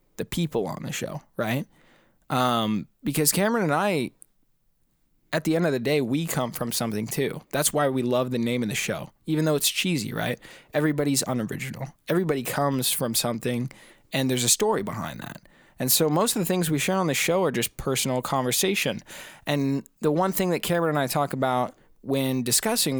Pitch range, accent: 125-155 Hz, American